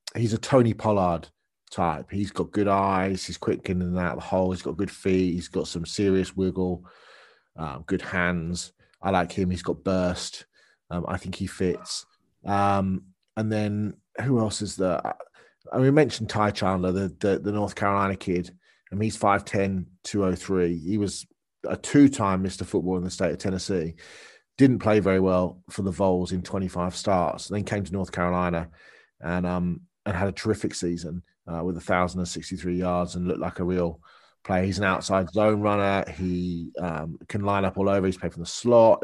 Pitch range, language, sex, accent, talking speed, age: 90-105 Hz, English, male, British, 190 wpm, 30-49